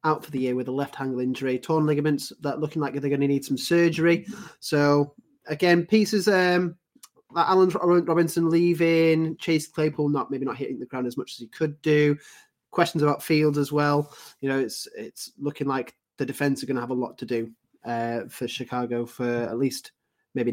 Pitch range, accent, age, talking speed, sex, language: 130-165 Hz, British, 20-39, 205 wpm, male, English